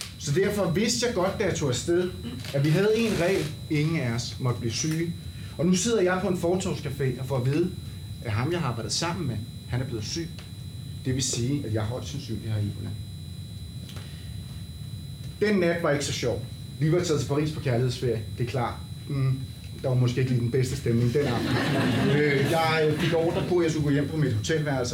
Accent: native